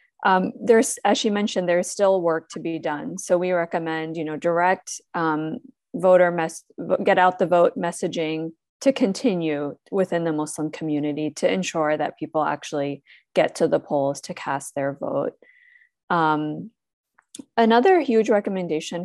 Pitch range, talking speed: 155-190 Hz, 150 wpm